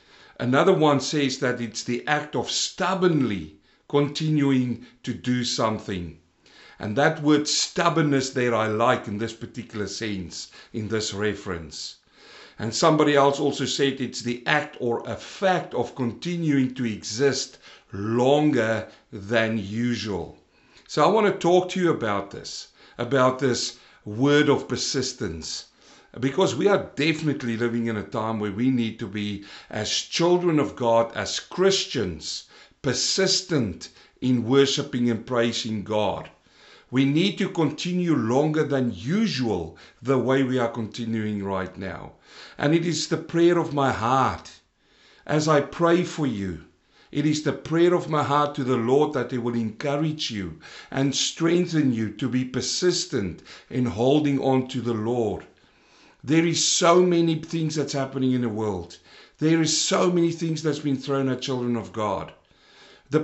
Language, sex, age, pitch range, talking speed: English, male, 60-79, 115-155 Hz, 150 wpm